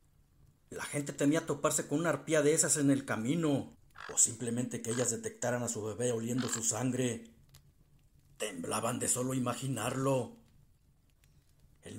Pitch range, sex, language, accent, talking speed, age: 120-145 Hz, male, Spanish, Mexican, 140 wpm, 50-69